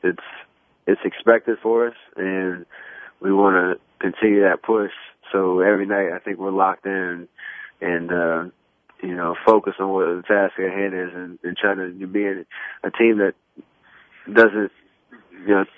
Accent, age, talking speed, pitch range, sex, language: American, 20-39, 155 wpm, 95-105 Hz, male, English